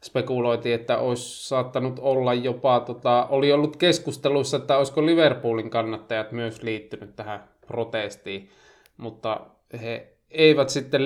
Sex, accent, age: male, native, 20-39